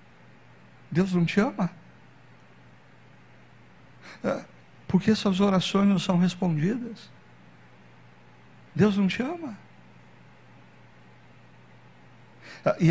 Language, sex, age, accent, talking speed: Portuguese, male, 60-79, Brazilian, 75 wpm